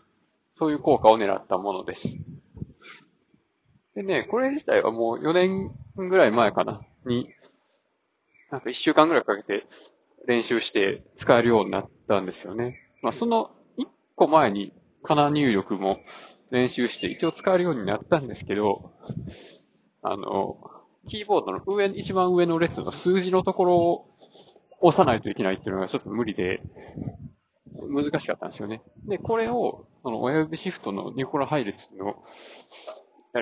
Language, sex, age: Japanese, male, 20-39